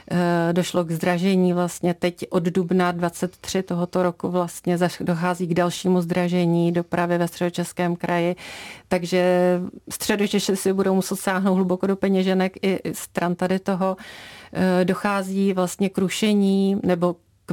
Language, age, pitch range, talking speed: Czech, 40-59, 175-190 Hz, 130 wpm